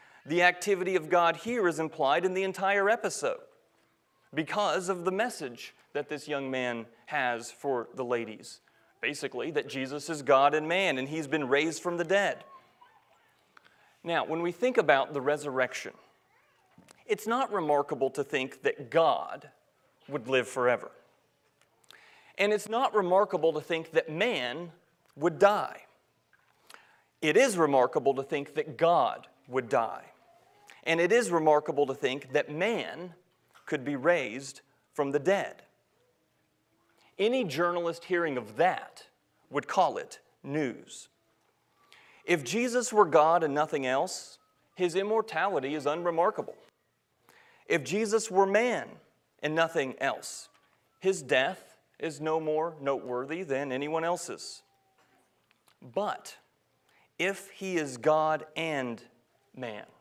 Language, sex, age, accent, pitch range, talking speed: English, male, 30-49, American, 145-200 Hz, 130 wpm